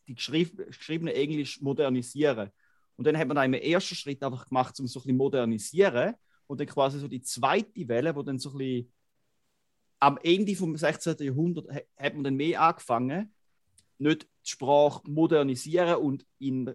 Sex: male